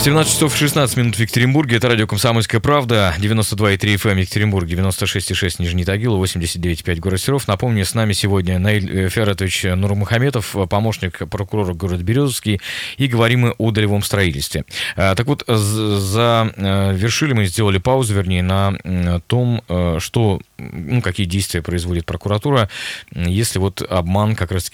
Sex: male